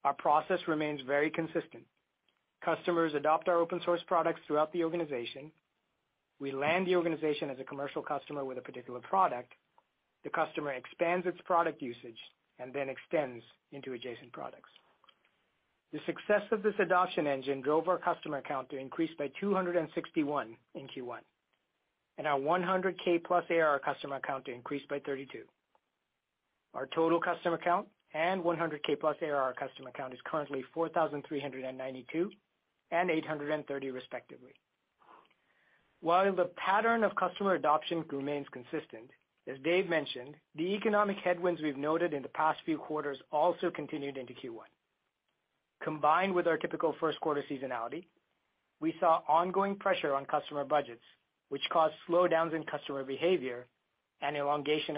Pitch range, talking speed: 140-175 Hz, 140 wpm